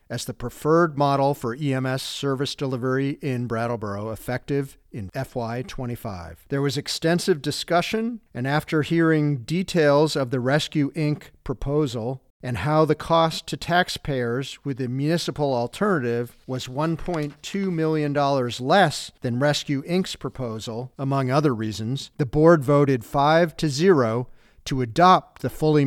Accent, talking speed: American, 130 wpm